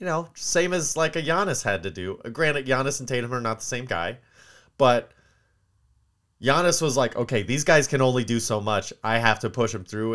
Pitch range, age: 100-130 Hz, 30-49